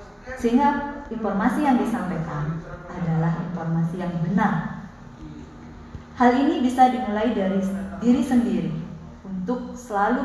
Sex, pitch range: female, 170-230 Hz